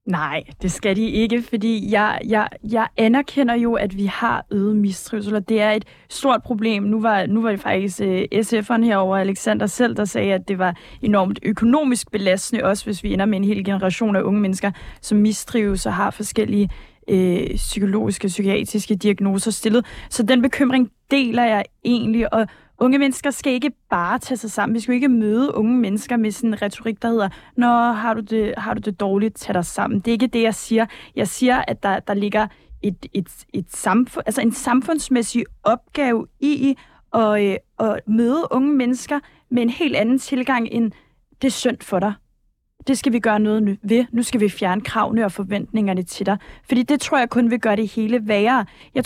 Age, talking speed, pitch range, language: 20-39, 200 wpm, 205-250 Hz, Danish